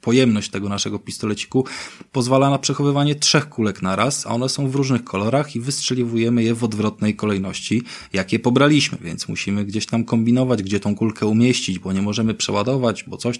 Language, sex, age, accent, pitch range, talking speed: Polish, male, 20-39, native, 95-120 Hz, 180 wpm